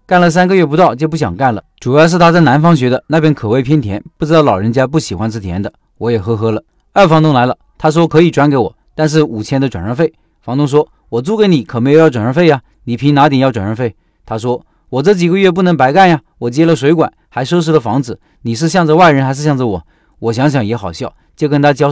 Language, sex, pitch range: Chinese, male, 120-160 Hz